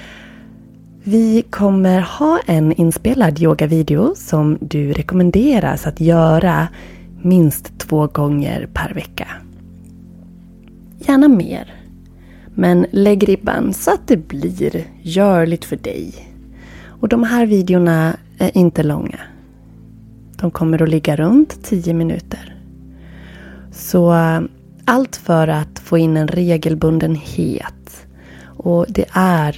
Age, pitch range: 30-49, 150-205 Hz